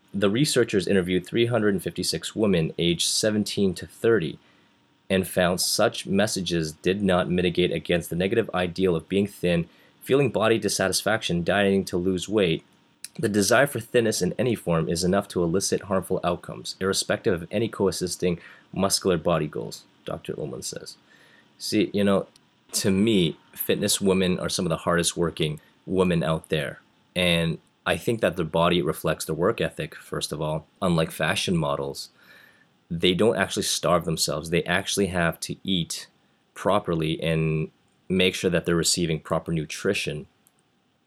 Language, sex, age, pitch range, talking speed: English, male, 30-49, 80-95 Hz, 150 wpm